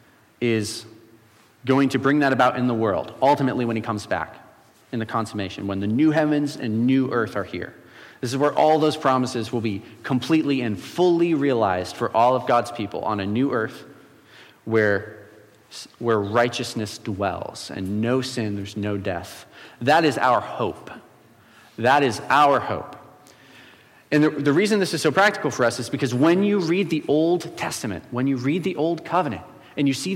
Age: 30-49